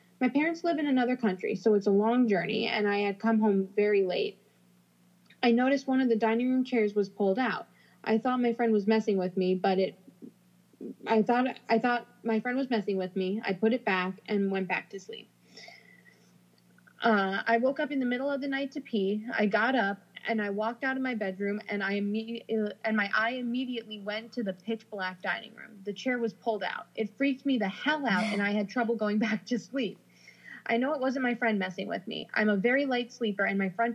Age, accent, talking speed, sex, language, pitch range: 20-39, American, 230 wpm, female, English, 195-240 Hz